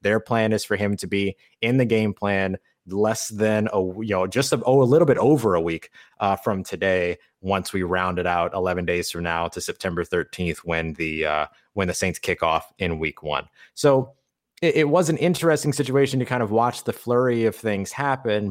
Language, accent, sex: English, American, male